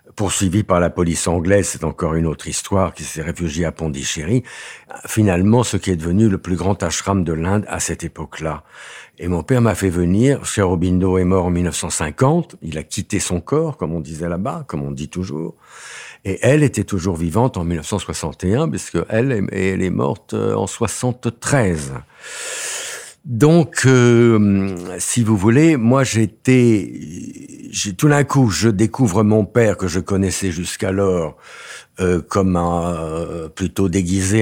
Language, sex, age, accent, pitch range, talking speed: French, male, 60-79, French, 85-105 Hz, 160 wpm